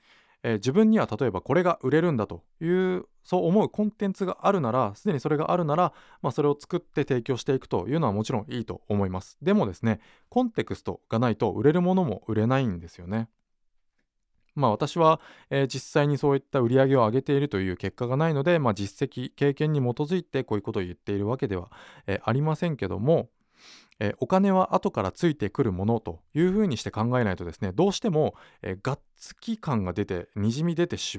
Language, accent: Japanese, native